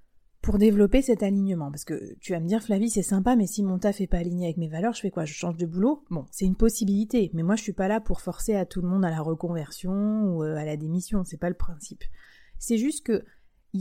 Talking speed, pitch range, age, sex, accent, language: 270 wpm, 175-230 Hz, 30-49, female, French, French